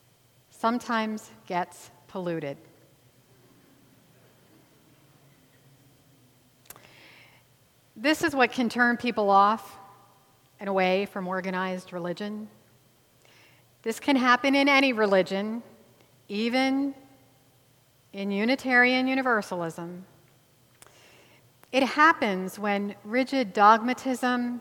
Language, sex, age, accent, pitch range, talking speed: English, female, 40-59, American, 165-235 Hz, 75 wpm